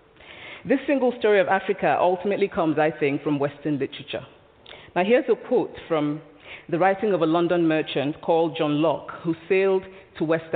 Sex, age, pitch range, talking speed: female, 40-59, 150-190 Hz, 170 wpm